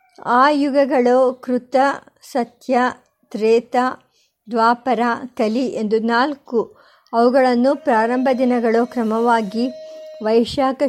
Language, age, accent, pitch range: Kannada, 50-69, native, 230-275 Hz